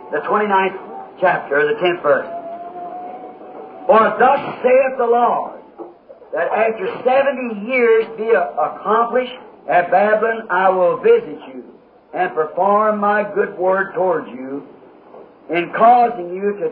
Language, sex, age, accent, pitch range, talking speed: English, male, 60-79, American, 205-270 Hz, 125 wpm